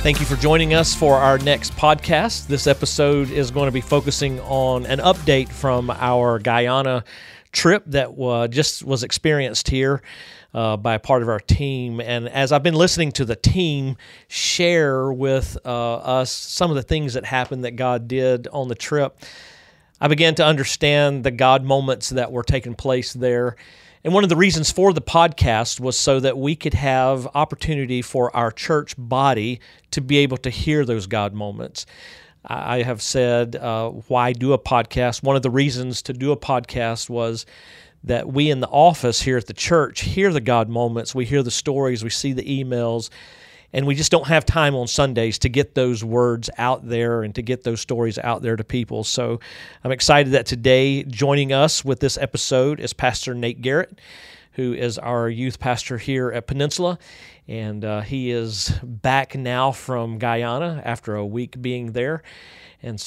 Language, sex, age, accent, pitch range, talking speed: English, male, 40-59, American, 120-145 Hz, 185 wpm